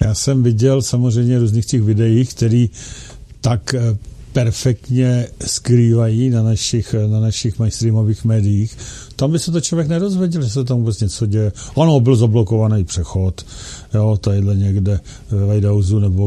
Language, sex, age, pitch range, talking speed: Czech, male, 50-69, 105-125 Hz, 145 wpm